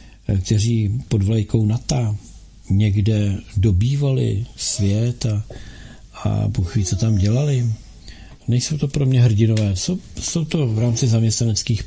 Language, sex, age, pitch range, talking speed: Czech, male, 50-69, 100-120 Hz, 120 wpm